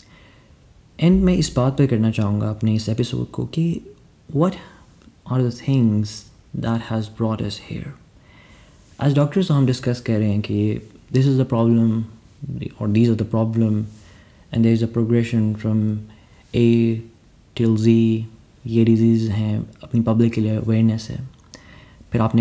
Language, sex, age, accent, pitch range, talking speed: English, male, 30-49, Indian, 110-130 Hz, 145 wpm